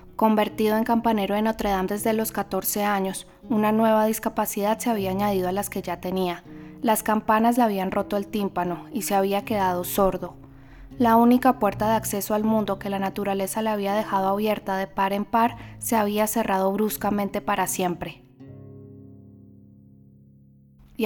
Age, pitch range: 20-39, 190-220 Hz